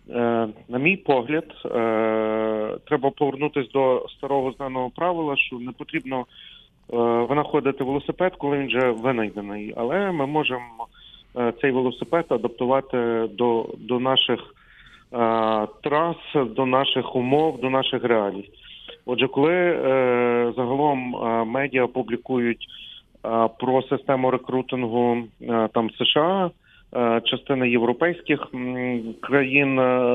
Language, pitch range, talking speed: Ukrainian, 125-145 Hz, 90 wpm